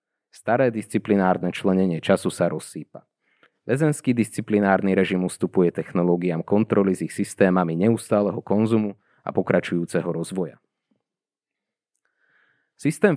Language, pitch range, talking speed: Slovak, 90-110 Hz, 95 wpm